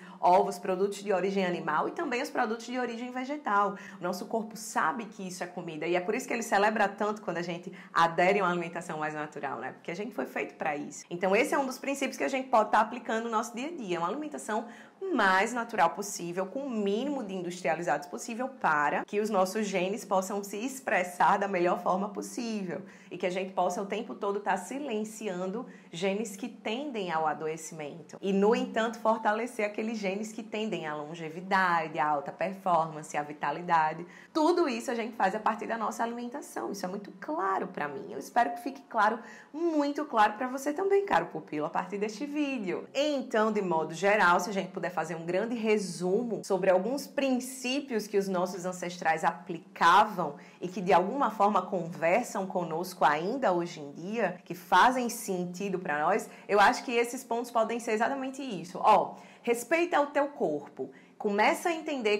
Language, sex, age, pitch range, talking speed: Portuguese, female, 20-39, 180-235 Hz, 195 wpm